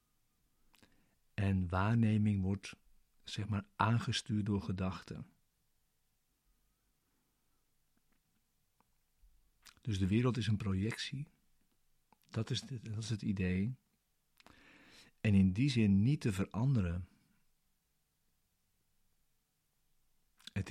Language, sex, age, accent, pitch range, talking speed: Dutch, male, 50-69, Dutch, 95-110 Hz, 80 wpm